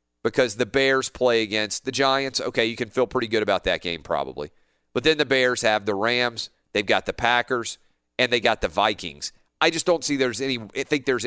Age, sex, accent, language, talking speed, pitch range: 40-59, male, American, English, 225 wpm, 100-125 Hz